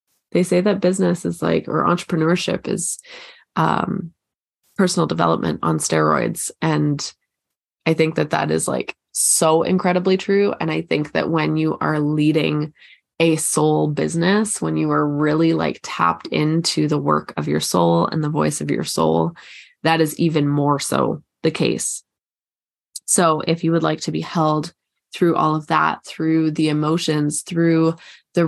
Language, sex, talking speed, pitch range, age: English, female, 160 wpm, 150-175 Hz, 20-39